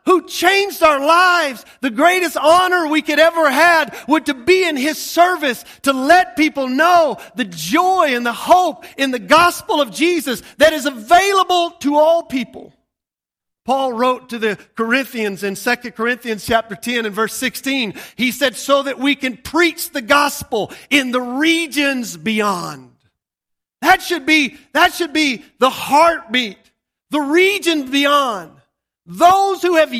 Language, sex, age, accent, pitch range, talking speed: English, male, 40-59, American, 245-320 Hz, 155 wpm